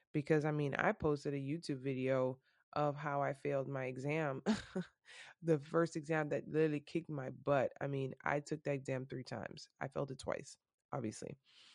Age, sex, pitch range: 20-39, female, 140-165 Hz